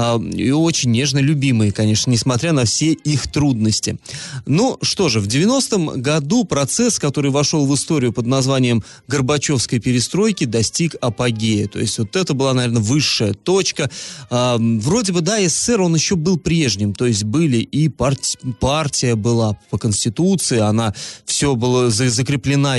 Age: 30-49